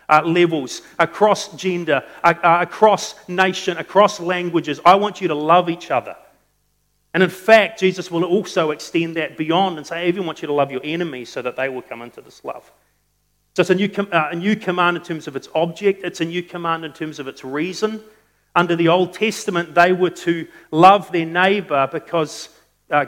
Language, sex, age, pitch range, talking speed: English, male, 40-59, 155-185 Hz, 200 wpm